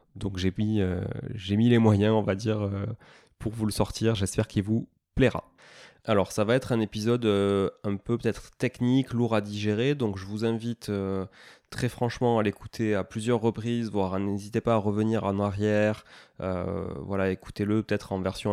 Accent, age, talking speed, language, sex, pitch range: French, 20-39, 185 wpm, French, male, 100-115 Hz